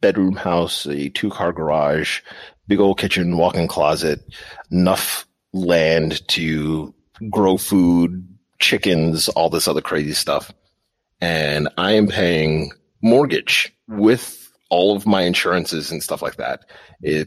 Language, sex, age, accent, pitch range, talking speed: English, male, 30-49, American, 85-135 Hz, 125 wpm